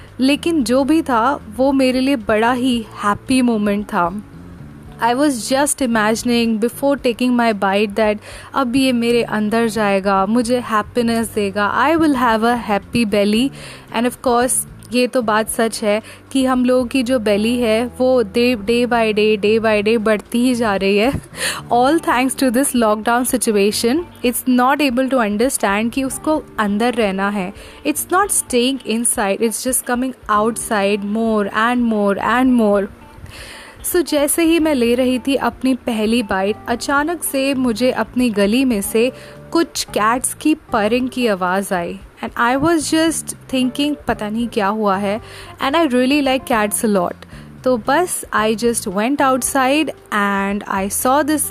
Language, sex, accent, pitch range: English, female, Indian, 220-270 Hz